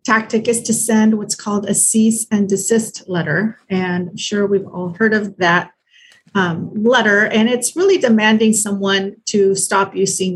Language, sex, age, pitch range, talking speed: English, female, 40-59, 185-220 Hz, 170 wpm